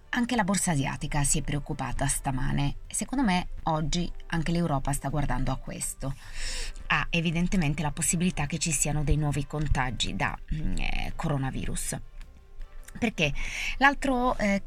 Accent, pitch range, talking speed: native, 140-175 Hz, 145 wpm